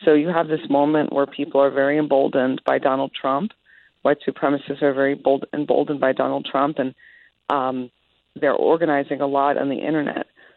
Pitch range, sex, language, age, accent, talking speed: 135-160 Hz, female, English, 40-59, American, 175 wpm